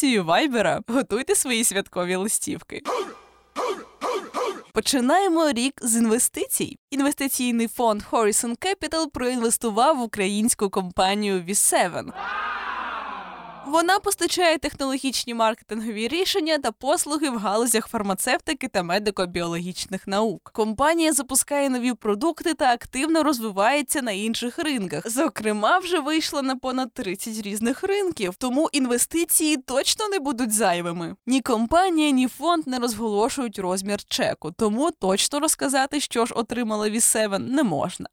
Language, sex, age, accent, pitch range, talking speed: Ukrainian, female, 20-39, native, 210-295 Hz, 115 wpm